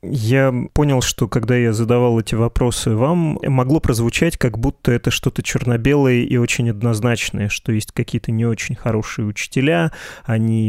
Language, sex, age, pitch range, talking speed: Russian, male, 20-39, 115-135 Hz, 150 wpm